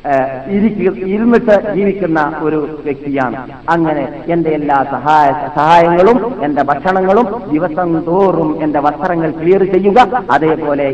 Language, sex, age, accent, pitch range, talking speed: Malayalam, male, 50-69, native, 165-225 Hz, 100 wpm